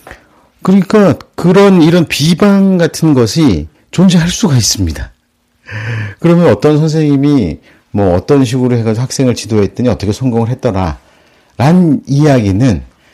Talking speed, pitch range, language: 100 wpm, 100-150 Hz, English